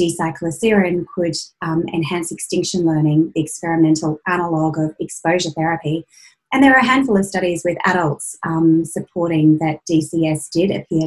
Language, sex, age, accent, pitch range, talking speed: English, female, 30-49, Australian, 160-185 Hz, 145 wpm